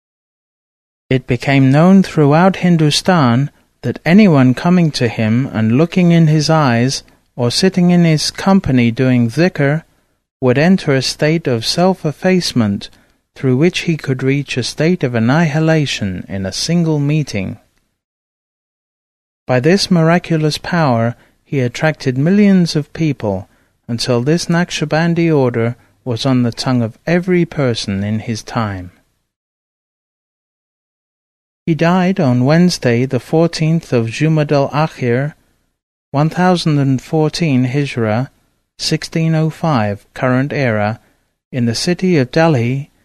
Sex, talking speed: male, 115 wpm